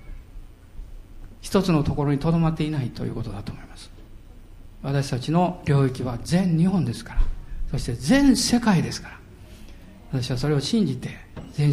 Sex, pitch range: male, 105-165 Hz